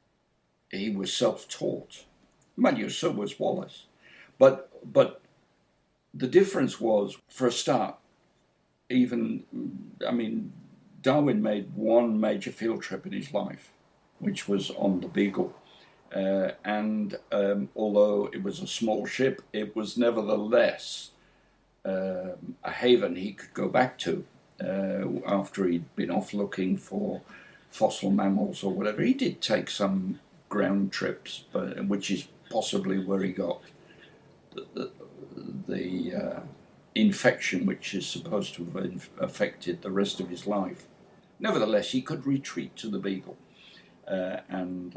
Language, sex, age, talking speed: English, male, 60-79, 135 wpm